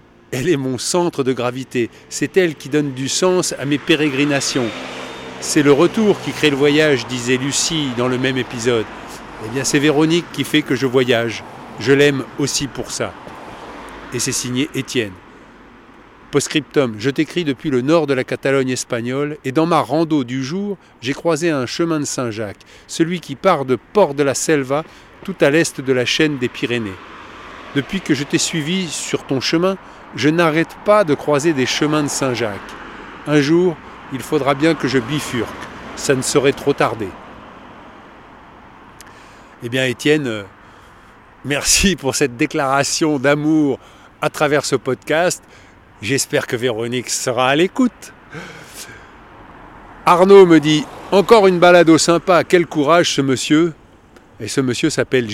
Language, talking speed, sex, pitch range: French, 155 wpm, male, 125-155 Hz